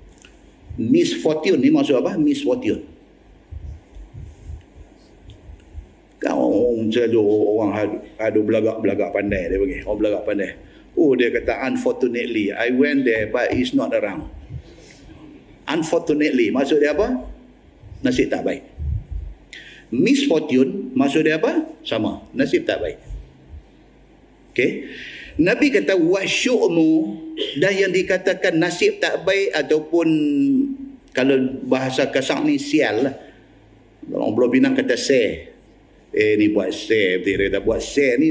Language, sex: Malay, male